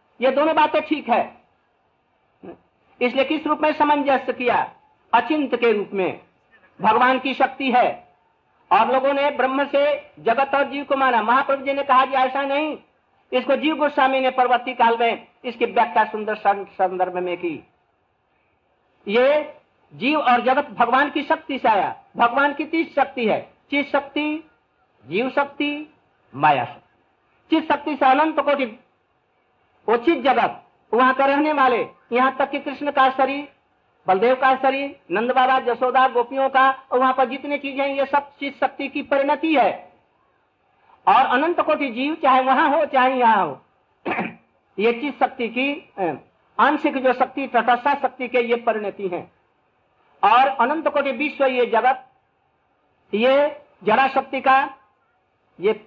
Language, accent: Hindi, native